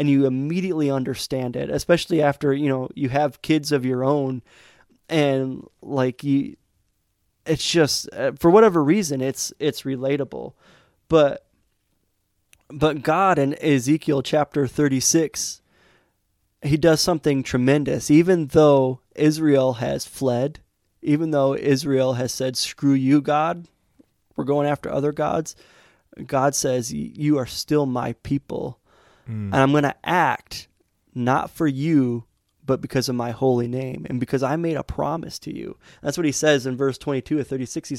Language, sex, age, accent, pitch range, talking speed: English, male, 20-39, American, 130-150 Hz, 150 wpm